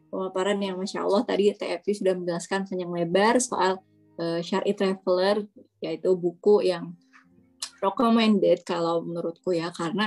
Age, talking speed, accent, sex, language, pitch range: 20-39, 135 wpm, native, female, Indonesian, 180-215 Hz